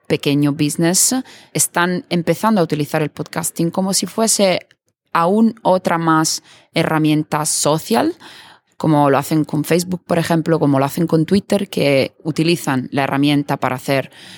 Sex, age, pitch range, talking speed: female, 20-39, 145-180 Hz, 140 wpm